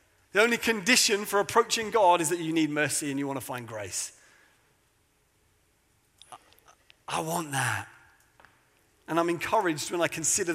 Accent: British